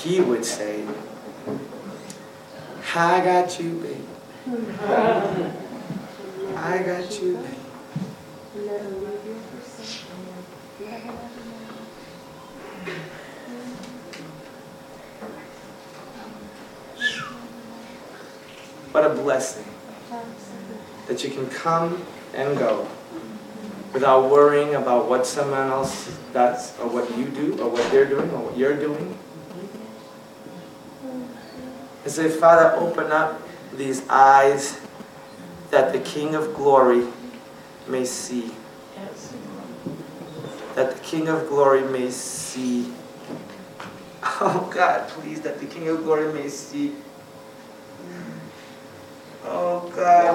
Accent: American